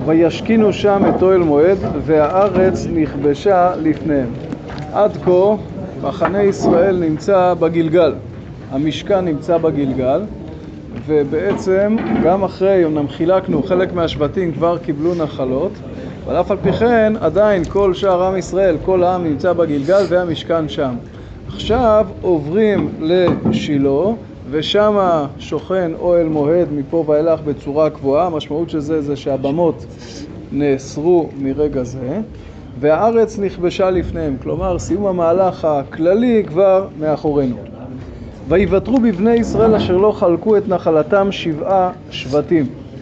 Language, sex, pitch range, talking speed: Hebrew, male, 150-195 Hz, 115 wpm